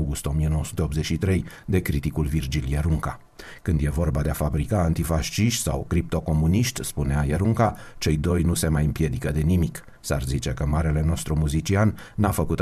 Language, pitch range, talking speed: Romanian, 75-90 Hz, 155 wpm